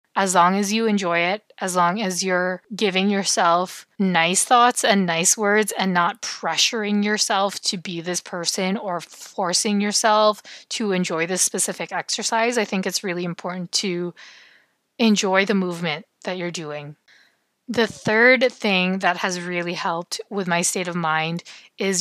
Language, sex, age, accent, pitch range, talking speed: English, female, 20-39, American, 175-215 Hz, 160 wpm